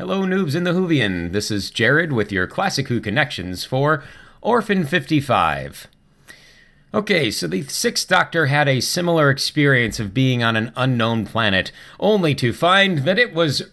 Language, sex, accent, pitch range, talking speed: English, male, American, 105-150 Hz, 160 wpm